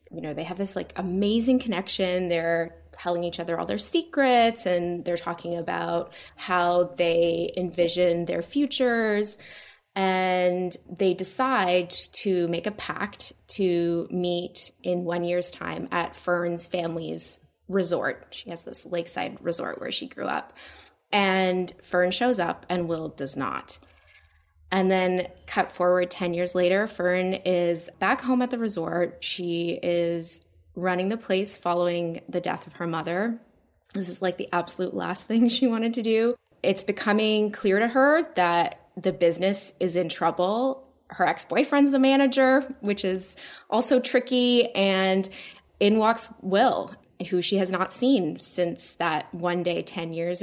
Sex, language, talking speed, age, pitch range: female, English, 150 wpm, 20-39, 175-210 Hz